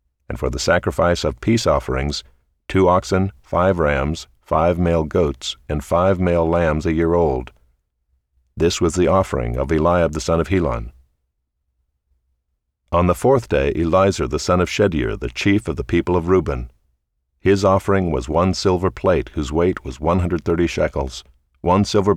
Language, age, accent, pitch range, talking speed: English, 50-69, American, 65-90 Hz, 160 wpm